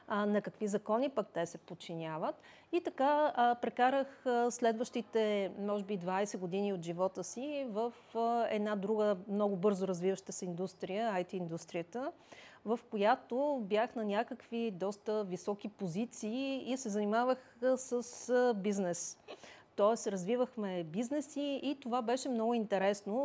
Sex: female